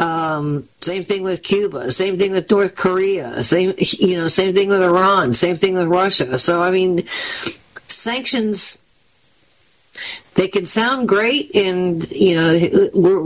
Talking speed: 150 wpm